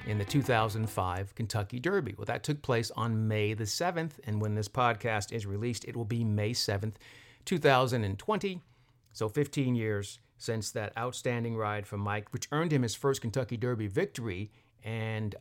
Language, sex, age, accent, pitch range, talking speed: English, male, 50-69, American, 110-135 Hz, 170 wpm